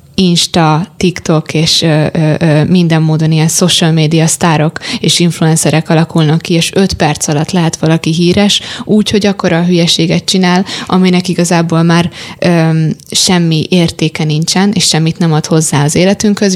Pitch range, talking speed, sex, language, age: 155-175 Hz, 150 wpm, female, Hungarian, 20-39